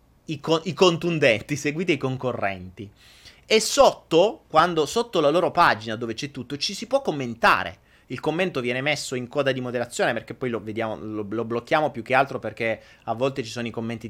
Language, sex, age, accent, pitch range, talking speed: Italian, male, 30-49, native, 115-180 Hz, 195 wpm